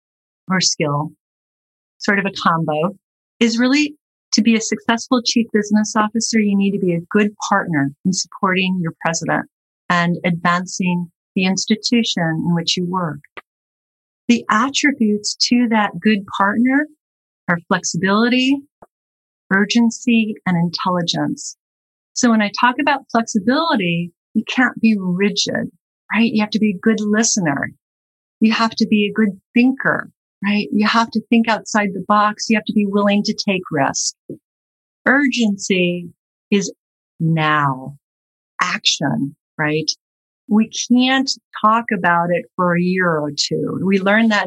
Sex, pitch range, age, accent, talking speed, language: female, 175-230 Hz, 40-59, American, 140 wpm, English